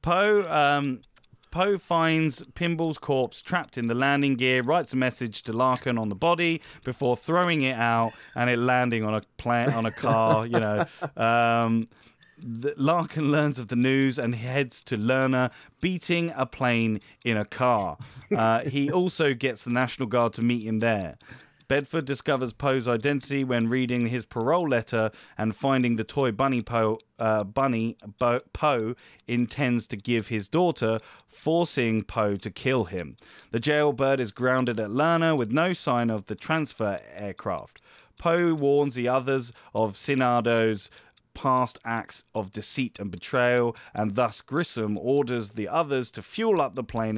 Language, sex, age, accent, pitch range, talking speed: English, male, 30-49, British, 115-140 Hz, 155 wpm